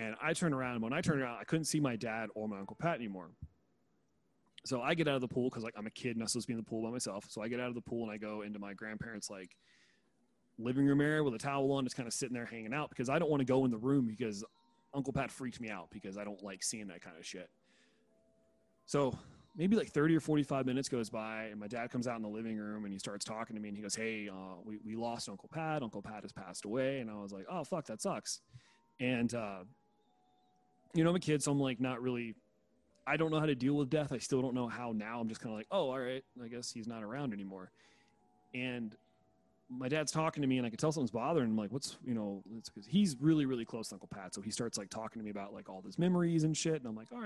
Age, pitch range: 30-49, 110-140 Hz